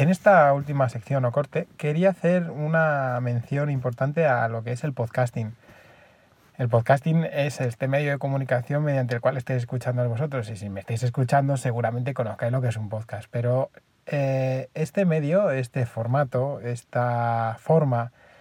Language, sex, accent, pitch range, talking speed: Spanish, male, Spanish, 125-155 Hz, 165 wpm